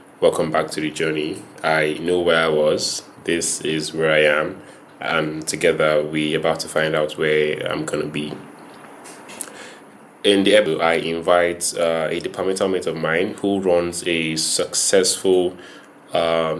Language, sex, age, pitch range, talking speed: English, male, 20-39, 80-85 Hz, 150 wpm